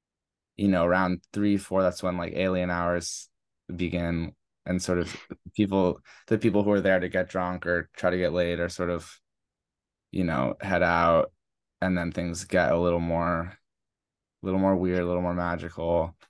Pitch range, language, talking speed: 85-105 Hz, English, 185 wpm